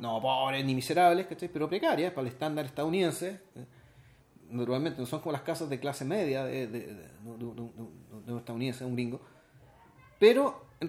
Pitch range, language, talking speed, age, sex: 130-190 Hz, Spanish, 145 wpm, 30-49, male